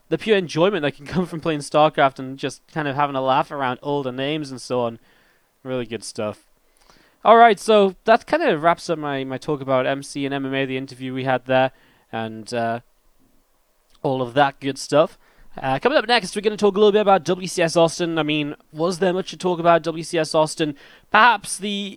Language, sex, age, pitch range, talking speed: English, male, 10-29, 140-180 Hz, 210 wpm